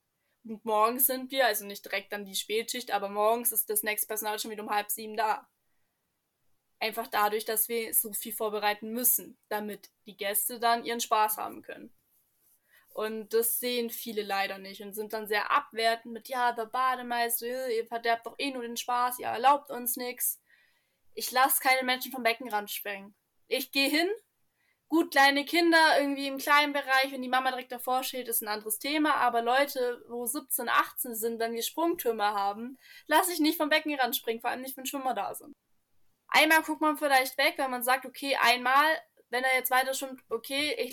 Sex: female